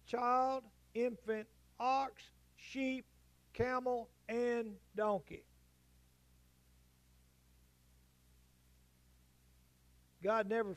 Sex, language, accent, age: male, English, American, 50-69